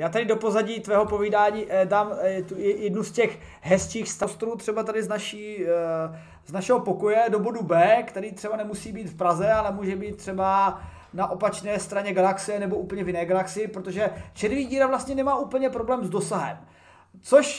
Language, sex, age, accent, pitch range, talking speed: Czech, male, 20-39, native, 190-245 Hz, 175 wpm